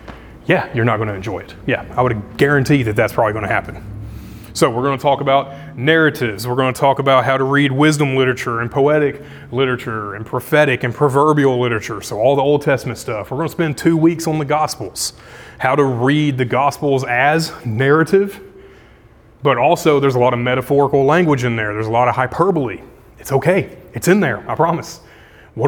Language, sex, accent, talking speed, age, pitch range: English, male, American, 205 wpm, 30-49, 120-150 Hz